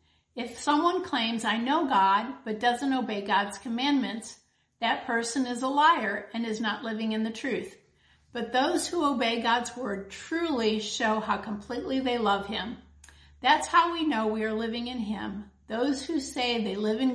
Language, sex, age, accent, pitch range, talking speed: English, female, 50-69, American, 215-260 Hz, 180 wpm